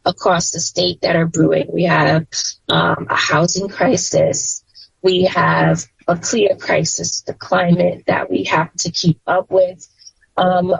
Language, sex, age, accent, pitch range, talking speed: English, female, 20-39, American, 175-205 Hz, 150 wpm